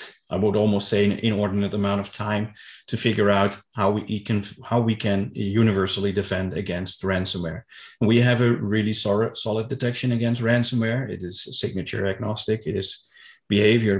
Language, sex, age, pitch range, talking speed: English, male, 30-49, 95-110 Hz, 165 wpm